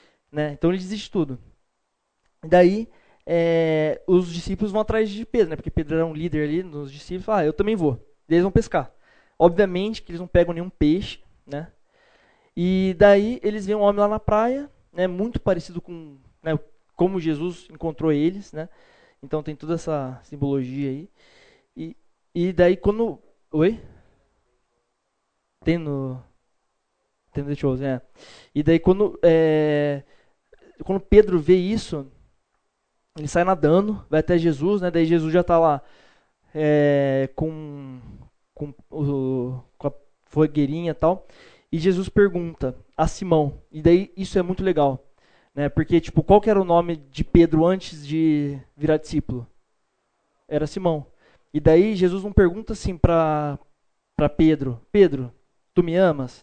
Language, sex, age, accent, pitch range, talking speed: Portuguese, male, 20-39, Brazilian, 150-185 Hz, 155 wpm